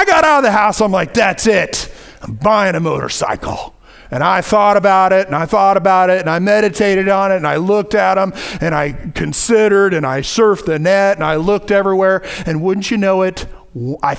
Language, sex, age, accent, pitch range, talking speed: English, male, 40-59, American, 180-250 Hz, 220 wpm